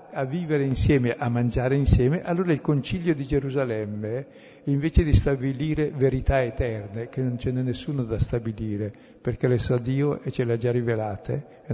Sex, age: male, 60-79